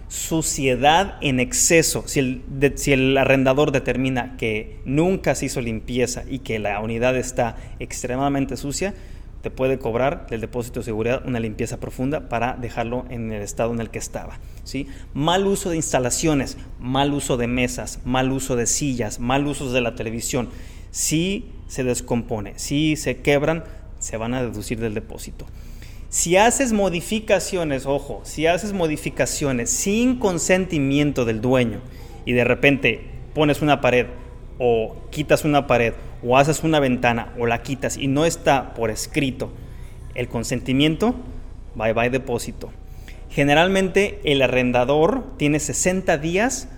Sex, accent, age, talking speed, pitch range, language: male, Mexican, 30-49, 145 wpm, 120-155 Hz, Spanish